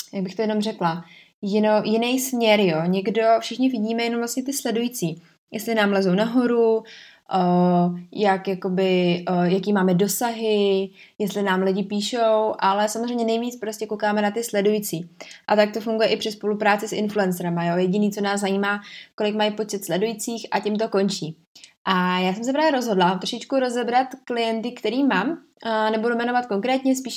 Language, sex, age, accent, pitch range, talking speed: Czech, female, 20-39, native, 200-240 Hz, 165 wpm